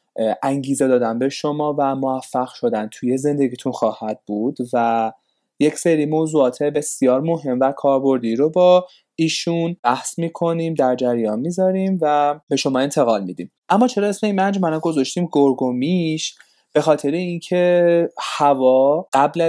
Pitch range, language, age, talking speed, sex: 120-155 Hz, Persian, 20-39, 140 wpm, male